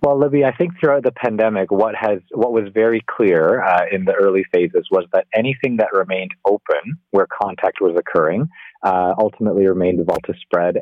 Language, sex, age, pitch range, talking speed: English, male, 30-49, 90-125 Hz, 195 wpm